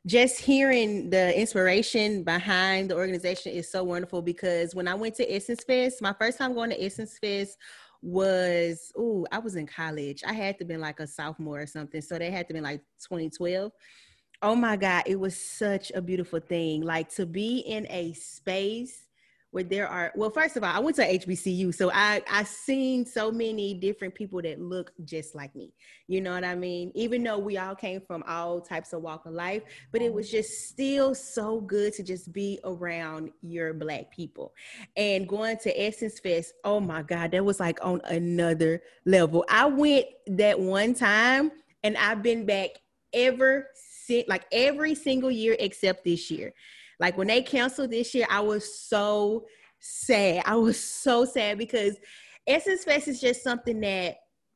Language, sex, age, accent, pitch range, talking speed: English, female, 30-49, American, 175-235 Hz, 185 wpm